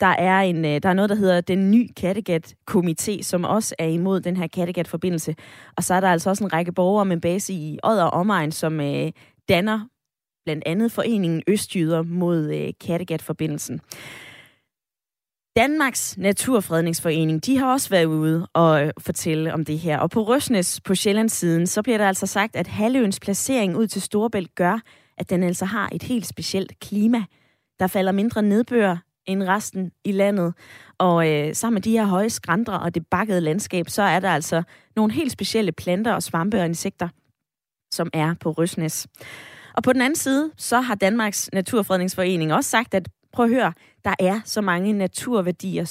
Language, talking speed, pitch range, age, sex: Danish, 175 wpm, 165-210 Hz, 20-39, female